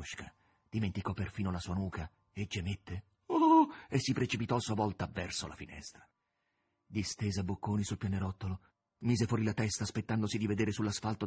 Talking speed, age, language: 165 wpm, 40-59, Italian